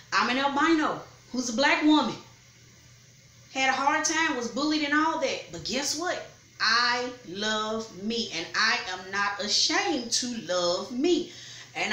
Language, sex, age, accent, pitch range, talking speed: English, female, 30-49, American, 180-275 Hz, 155 wpm